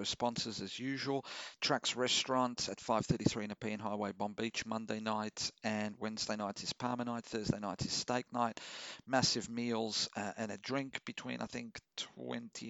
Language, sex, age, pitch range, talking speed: English, male, 50-69, 110-125 Hz, 170 wpm